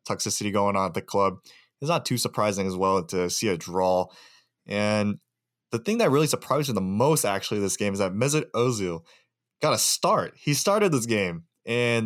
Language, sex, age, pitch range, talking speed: English, male, 20-39, 100-130 Hz, 200 wpm